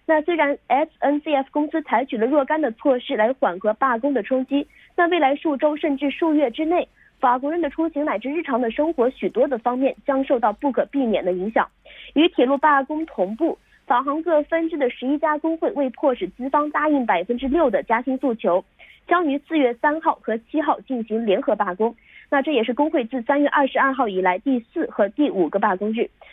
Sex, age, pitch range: female, 20-39, 235-300 Hz